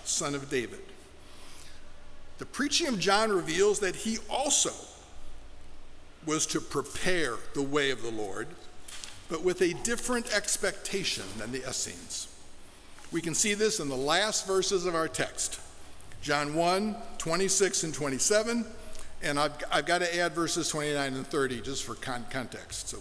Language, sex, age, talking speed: English, male, 50-69, 150 wpm